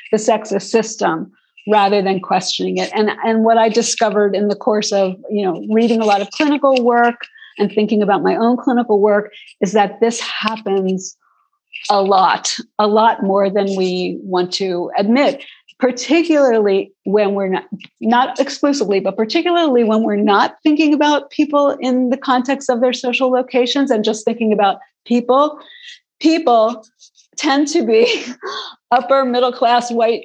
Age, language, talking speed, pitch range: 40-59, English, 155 wpm, 205-255 Hz